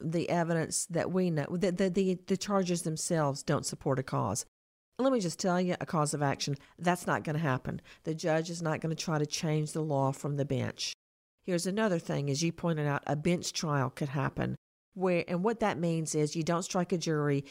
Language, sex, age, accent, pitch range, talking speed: English, female, 50-69, American, 150-180 Hz, 225 wpm